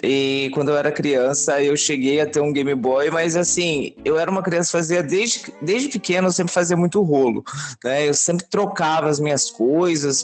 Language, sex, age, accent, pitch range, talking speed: Portuguese, male, 20-39, Brazilian, 135-170 Hz, 205 wpm